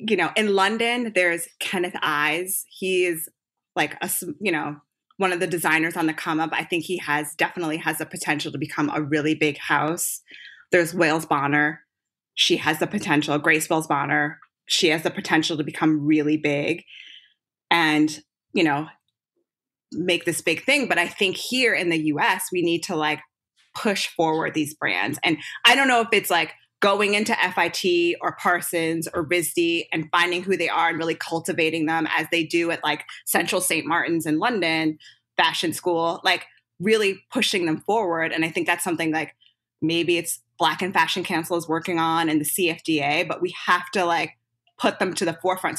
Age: 20-39